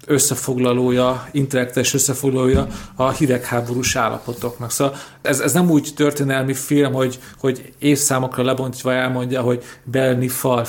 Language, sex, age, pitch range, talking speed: Hungarian, male, 40-59, 125-145 Hz, 120 wpm